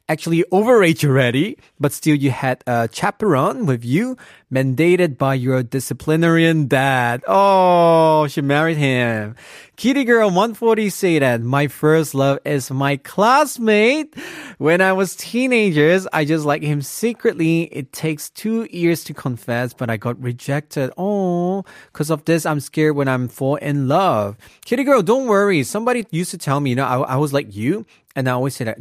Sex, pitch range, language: male, 125-190 Hz, Korean